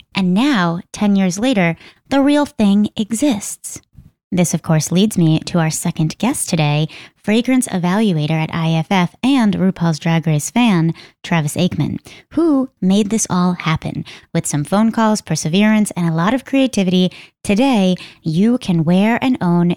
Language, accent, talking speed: English, American, 155 wpm